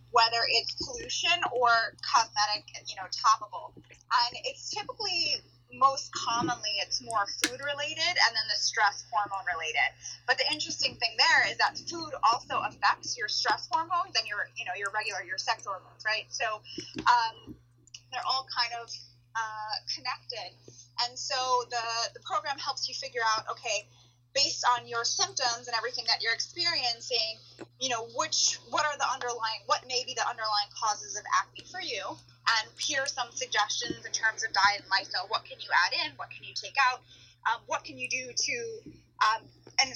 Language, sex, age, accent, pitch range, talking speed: English, female, 20-39, American, 210-290 Hz, 180 wpm